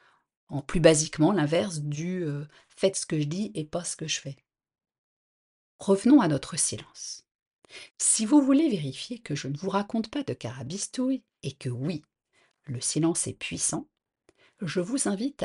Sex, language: female, French